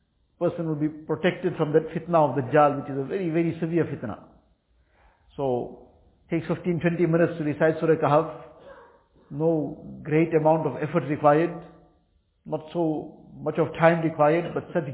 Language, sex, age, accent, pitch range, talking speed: English, male, 50-69, Indian, 150-170 Hz, 155 wpm